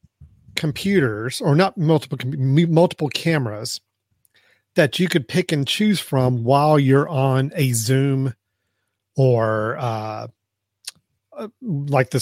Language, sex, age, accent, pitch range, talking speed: English, male, 40-59, American, 120-155 Hz, 110 wpm